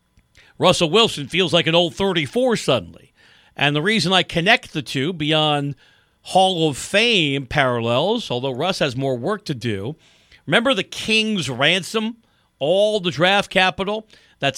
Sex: male